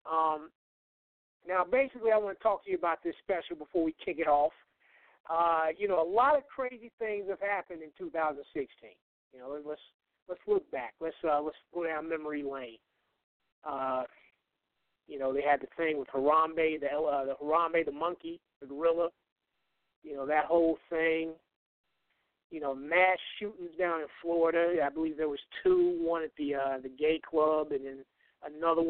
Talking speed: 180 wpm